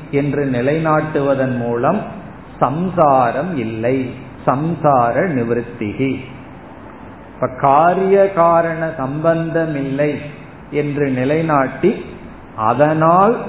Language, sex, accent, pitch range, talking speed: Tamil, male, native, 135-165 Hz, 60 wpm